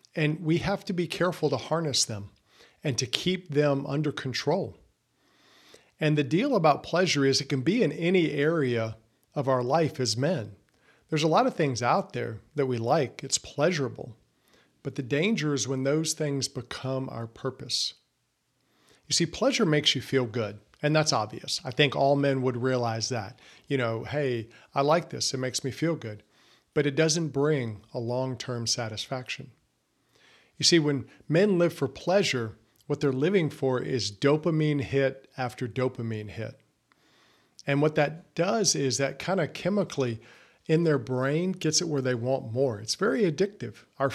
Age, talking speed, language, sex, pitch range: 40-59, 175 wpm, English, male, 125-155 Hz